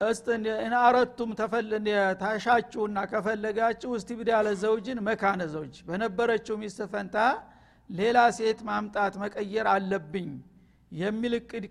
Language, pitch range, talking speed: Amharic, 195-235 Hz, 80 wpm